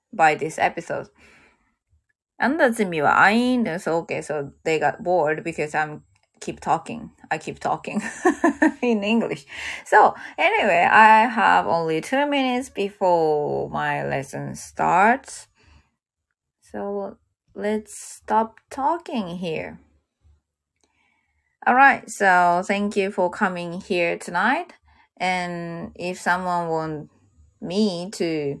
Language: Japanese